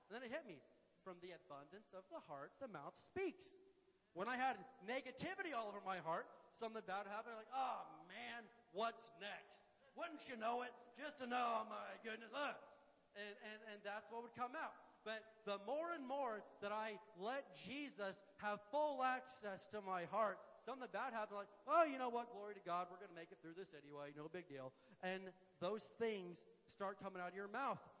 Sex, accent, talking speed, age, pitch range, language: male, American, 210 wpm, 40-59, 195-260 Hz, English